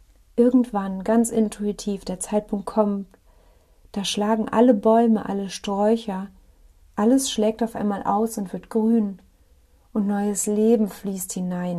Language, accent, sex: German, German, female